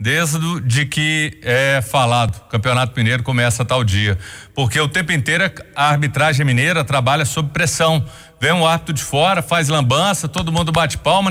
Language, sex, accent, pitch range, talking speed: Portuguese, male, Brazilian, 125-165 Hz, 170 wpm